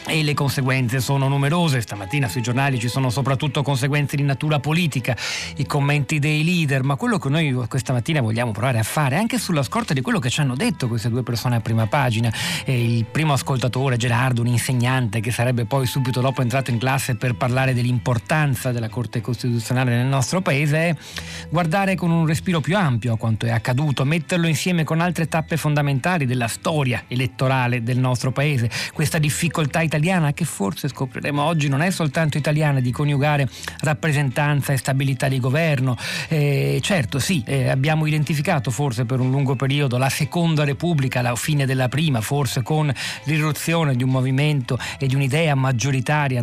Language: Italian